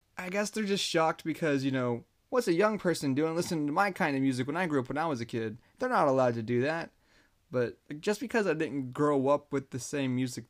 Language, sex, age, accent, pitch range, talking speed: English, male, 20-39, American, 125-160 Hz, 255 wpm